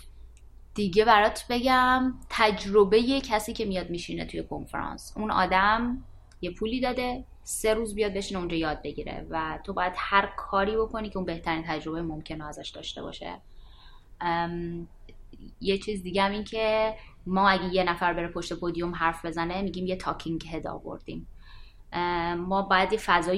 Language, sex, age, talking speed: Persian, female, 20-39, 155 wpm